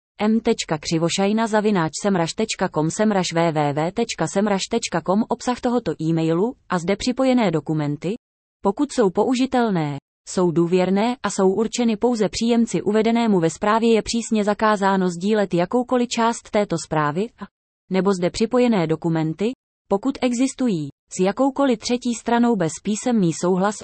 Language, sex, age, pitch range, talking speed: English, female, 20-39, 175-230 Hz, 110 wpm